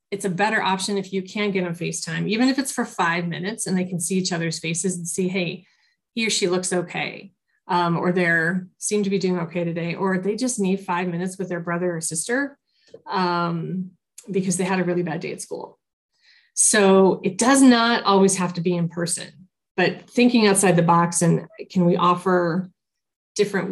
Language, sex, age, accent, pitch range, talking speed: English, female, 30-49, American, 175-200 Hz, 205 wpm